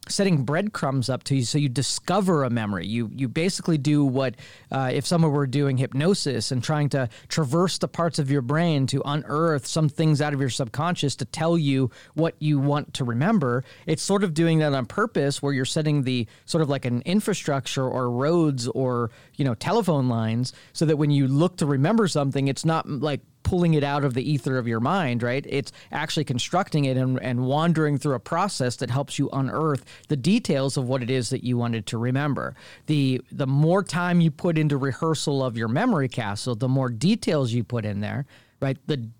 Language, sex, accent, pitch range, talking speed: English, male, American, 130-160 Hz, 210 wpm